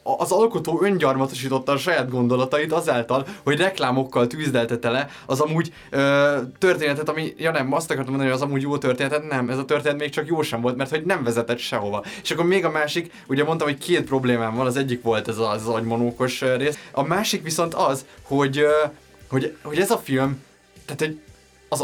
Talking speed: 200 wpm